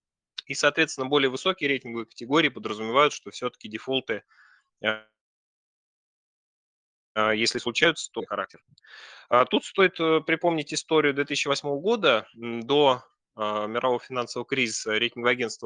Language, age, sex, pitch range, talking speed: Russian, 20-39, male, 115-150 Hz, 100 wpm